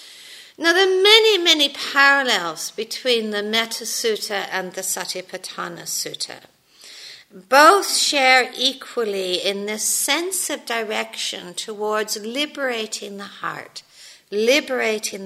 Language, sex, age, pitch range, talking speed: English, female, 60-79, 200-270 Hz, 105 wpm